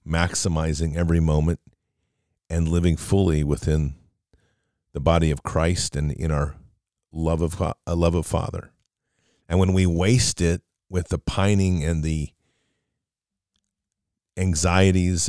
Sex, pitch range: male, 80-100 Hz